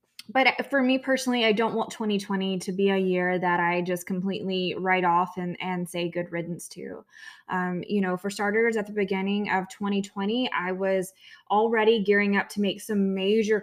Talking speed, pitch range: 185 wpm, 180-205 Hz